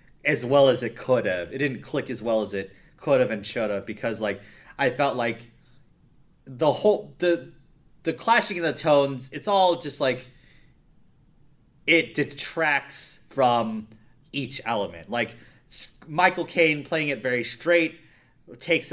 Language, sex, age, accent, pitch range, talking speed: English, male, 30-49, American, 110-150 Hz, 150 wpm